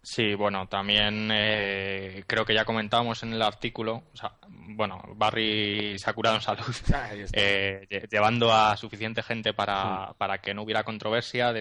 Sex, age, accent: male, 20-39, Spanish